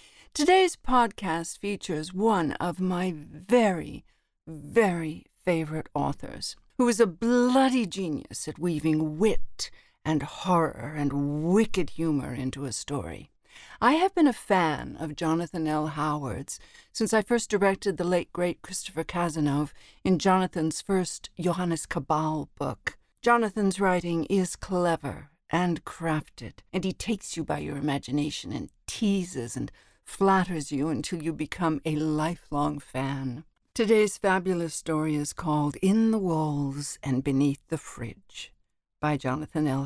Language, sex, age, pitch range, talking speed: English, female, 60-79, 150-200 Hz, 135 wpm